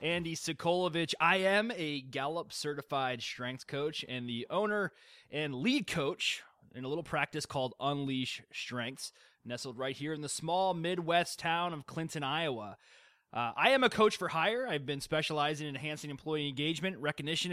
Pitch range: 135-180 Hz